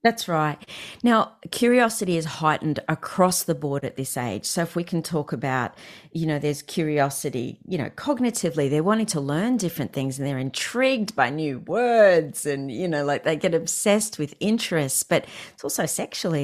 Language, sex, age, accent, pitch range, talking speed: English, female, 40-59, Australian, 140-170 Hz, 185 wpm